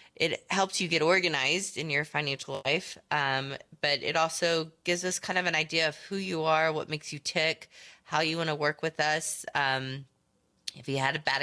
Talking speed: 210 wpm